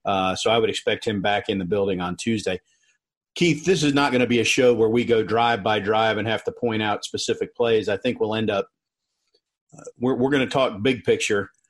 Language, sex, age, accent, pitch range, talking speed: English, male, 40-59, American, 115-140 Hz, 240 wpm